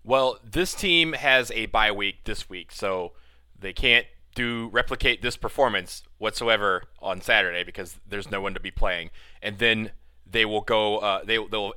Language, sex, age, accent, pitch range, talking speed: English, male, 30-49, American, 95-120 Hz, 180 wpm